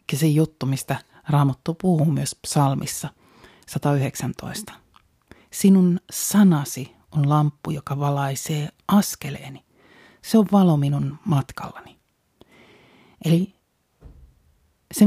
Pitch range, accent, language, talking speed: 145-195 Hz, native, Finnish, 90 wpm